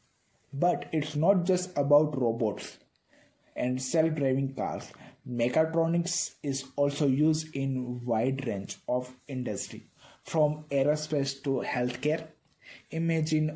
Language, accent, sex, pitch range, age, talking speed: English, Indian, male, 130-150 Hz, 20-39, 100 wpm